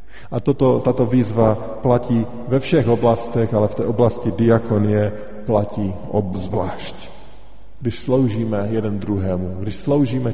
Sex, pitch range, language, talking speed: male, 105-125 Hz, Slovak, 120 wpm